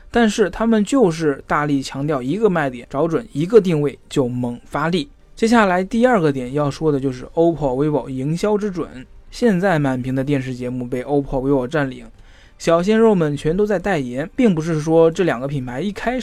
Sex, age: male, 20-39